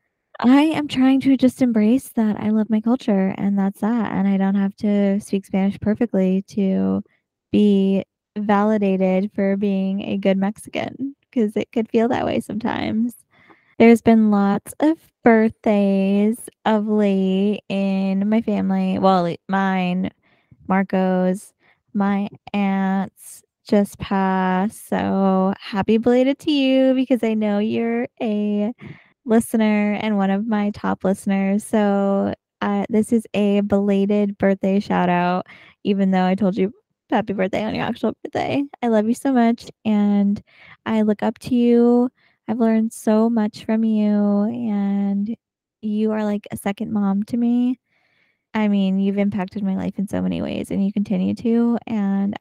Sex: female